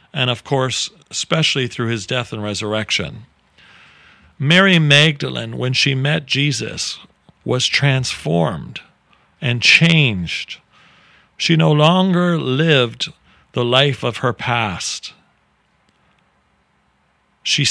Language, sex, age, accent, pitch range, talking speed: English, male, 40-59, American, 115-145 Hz, 100 wpm